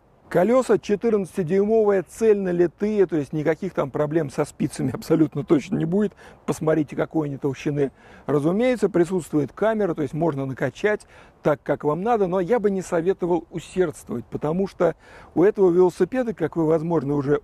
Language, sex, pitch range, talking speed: Russian, male, 145-190 Hz, 150 wpm